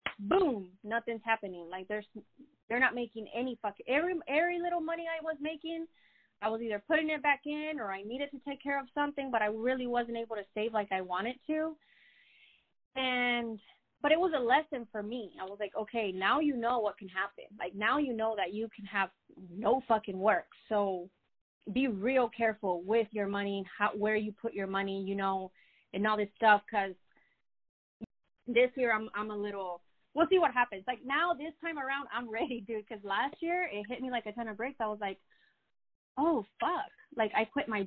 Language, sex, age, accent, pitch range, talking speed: English, female, 20-39, American, 205-275 Hz, 205 wpm